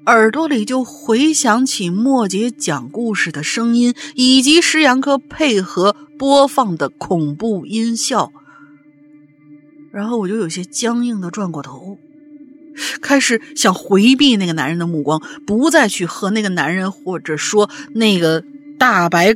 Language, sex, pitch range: Chinese, female, 195-305 Hz